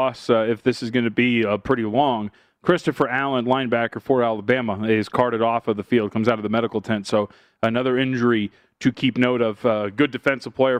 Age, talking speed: 30-49, 210 wpm